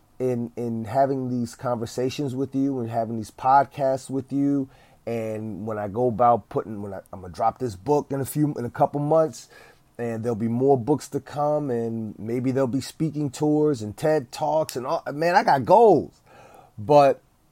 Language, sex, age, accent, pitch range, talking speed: English, male, 30-49, American, 115-145 Hz, 195 wpm